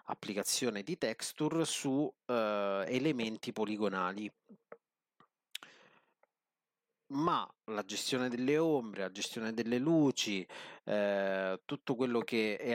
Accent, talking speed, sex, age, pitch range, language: native, 100 wpm, male, 30-49, 100-120 Hz, Italian